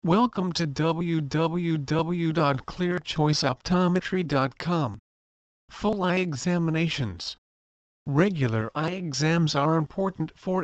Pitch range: 130-170 Hz